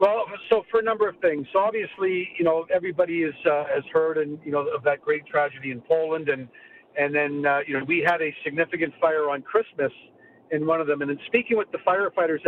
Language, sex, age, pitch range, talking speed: English, male, 50-69, 155-190 Hz, 230 wpm